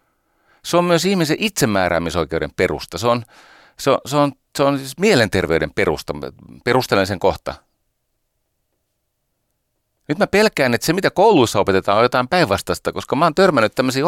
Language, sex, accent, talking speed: Finnish, male, native, 145 wpm